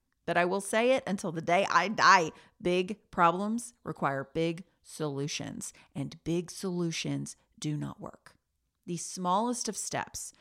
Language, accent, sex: English, American, female